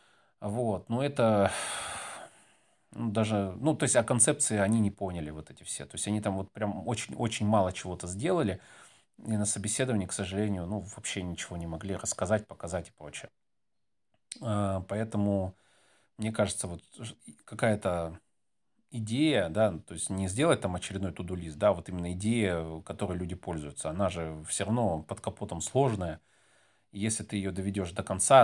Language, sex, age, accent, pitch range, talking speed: Russian, male, 30-49, native, 90-110 Hz, 155 wpm